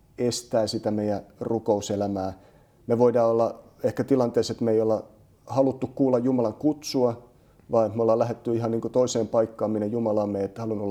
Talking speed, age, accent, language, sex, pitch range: 160 wpm, 30-49, native, Finnish, male, 105-125 Hz